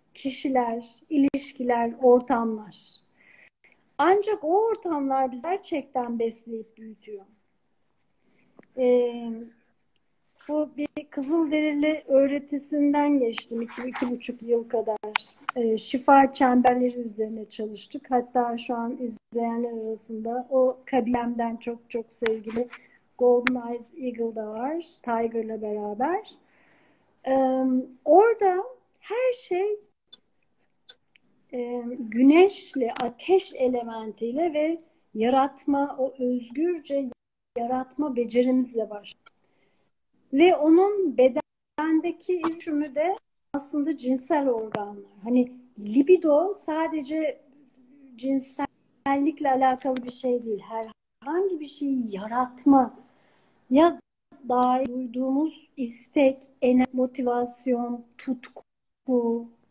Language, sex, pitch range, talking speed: Turkish, female, 235-295 Hz, 85 wpm